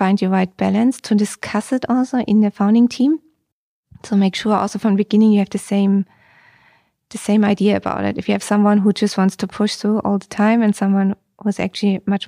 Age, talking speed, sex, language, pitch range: 20-39, 235 wpm, female, English, 190-215 Hz